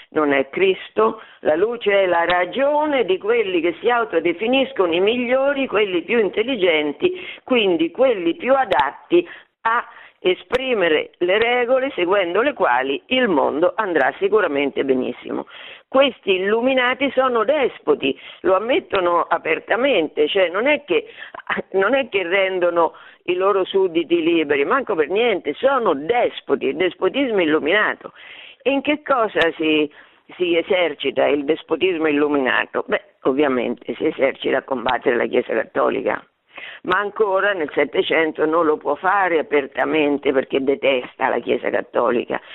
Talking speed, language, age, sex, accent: 135 wpm, Italian, 50-69, female, native